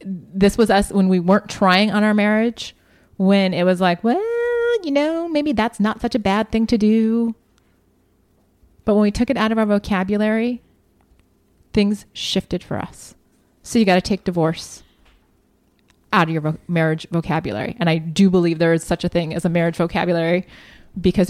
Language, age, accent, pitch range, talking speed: English, 30-49, American, 175-225 Hz, 180 wpm